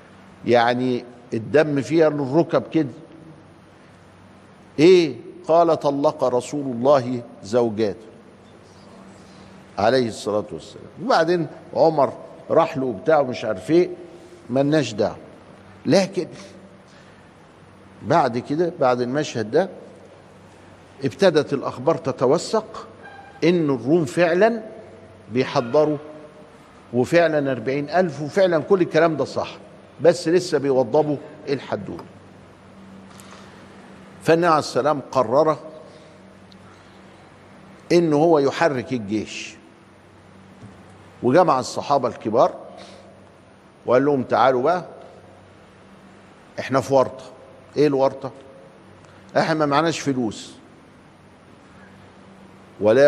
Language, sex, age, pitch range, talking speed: Arabic, male, 50-69, 120-160 Hz, 80 wpm